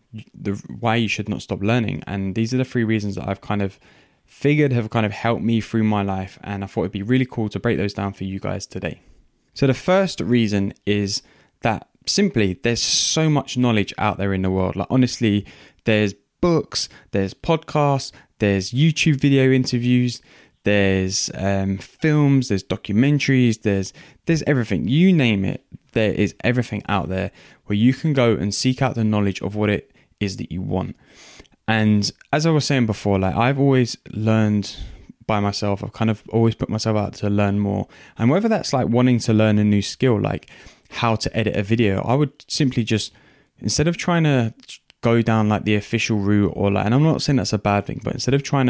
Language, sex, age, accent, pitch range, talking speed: English, male, 10-29, British, 100-125 Hz, 205 wpm